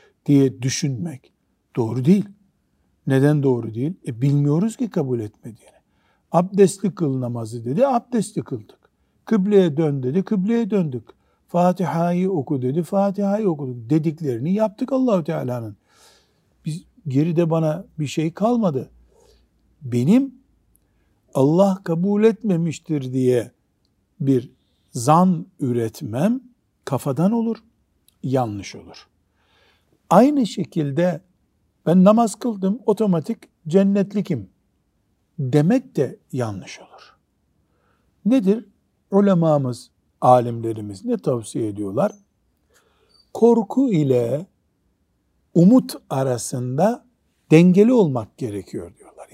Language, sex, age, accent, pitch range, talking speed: Turkish, male, 60-79, native, 130-200 Hz, 90 wpm